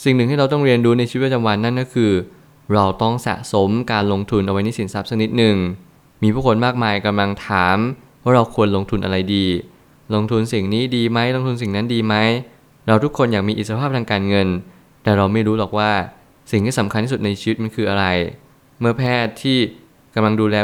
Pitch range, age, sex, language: 105-125 Hz, 20-39, male, Thai